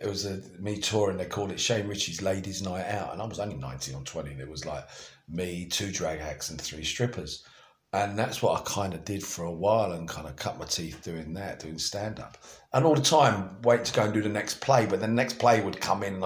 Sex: male